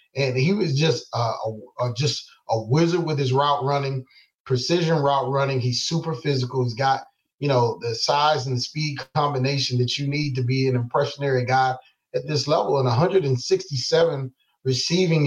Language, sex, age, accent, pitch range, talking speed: English, male, 30-49, American, 130-160 Hz, 155 wpm